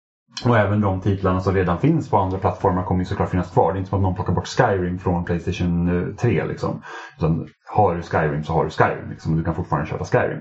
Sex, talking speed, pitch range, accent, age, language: male, 240 wpm, 90-105 Hz, Norwegian, 30-49, Swedish